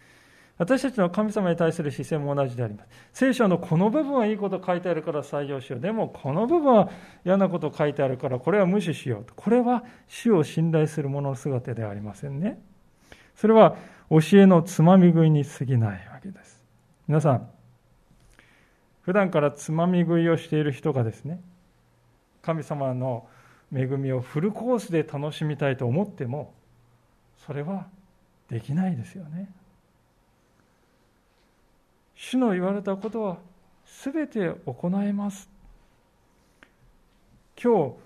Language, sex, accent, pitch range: Japanese, male, native, 140-190 Hz